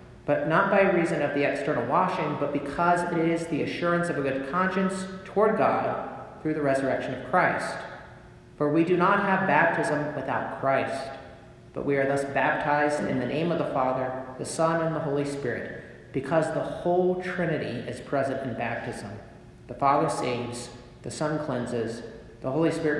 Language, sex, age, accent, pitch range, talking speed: English, male, 40-59, American, 125-160 Hz, 175 wpm